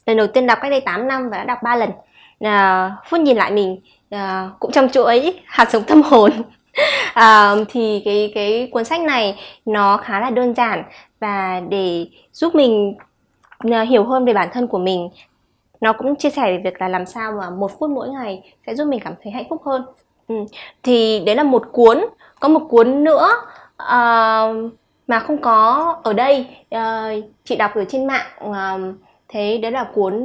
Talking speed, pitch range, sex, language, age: 180 wpm, 200-260 Hz, female, Vietnamese, 20-39